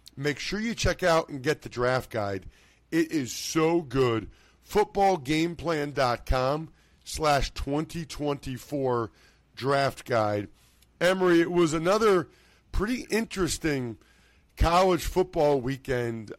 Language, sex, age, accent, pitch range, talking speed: English, male, 50-69, American, 130-175 Hz, 105 wpm